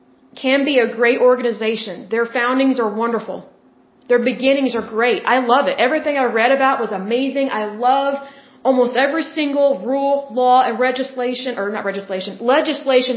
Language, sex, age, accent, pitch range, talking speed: Bengali, female, 30-49, American, 240-285 Hz, 160 wpm